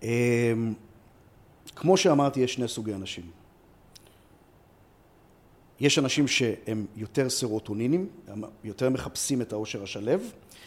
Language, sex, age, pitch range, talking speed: Hebrew, male, 40-59, 115-155 Hz, 100 wpm